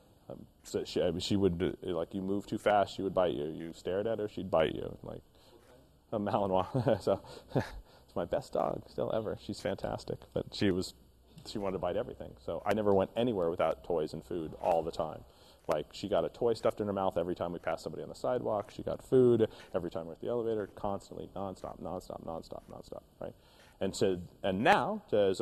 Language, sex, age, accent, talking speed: English, male, 30-49, American, 210 wpm